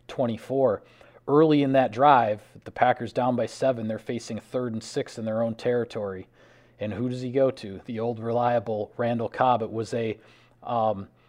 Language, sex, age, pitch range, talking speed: English, male, 40-59, 115-135 Hz, 180 wpm